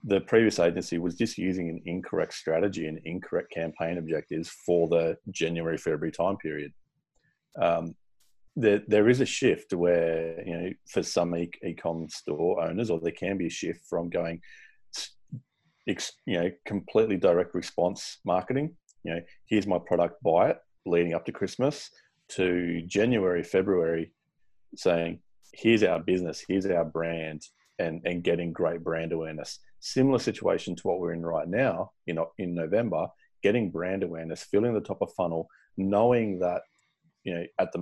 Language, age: English, 30-49